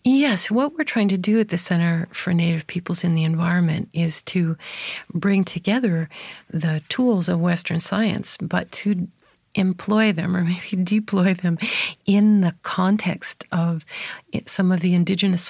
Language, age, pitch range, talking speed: English, 50-69, 170-205 Hz, 155 wpm